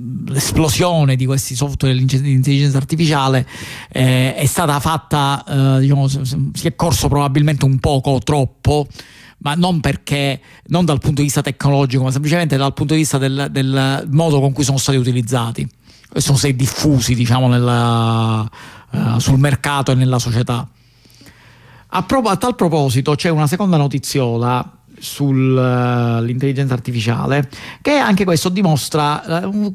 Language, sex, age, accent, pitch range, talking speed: Italian, male, 50-69, native, 125-150 Hz, 140 wpm